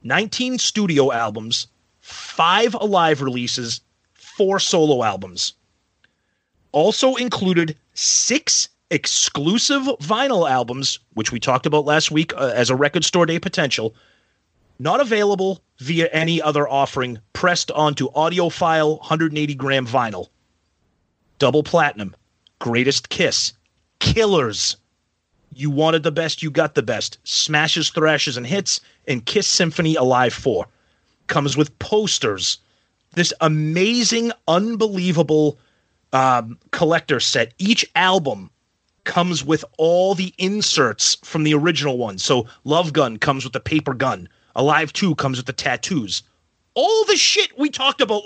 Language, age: English, 30-49